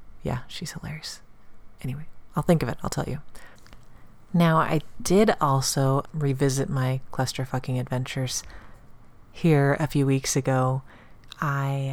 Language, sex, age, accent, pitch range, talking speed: English, female, 30-49, American, 130-160 Hz, 125 wpm